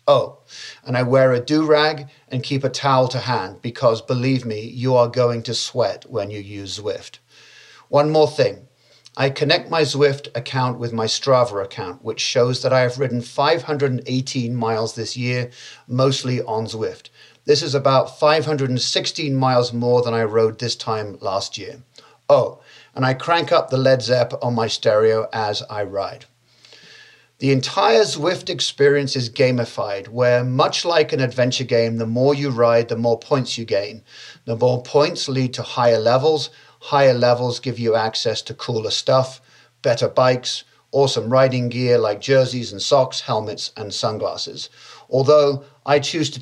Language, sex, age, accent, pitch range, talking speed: English, male, 50-69, British, 115-140 Hz, 165 wpm